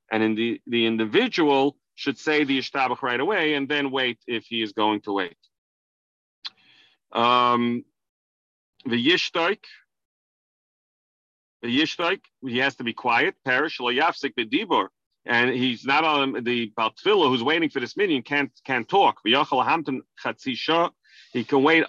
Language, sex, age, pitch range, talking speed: English, male, 40-59, 120-155 Hz, 130 wpm